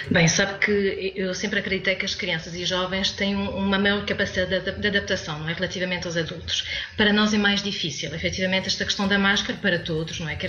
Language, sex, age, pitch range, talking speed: Portuguese, female, 20-39, 185-225 Hz, 210 wpm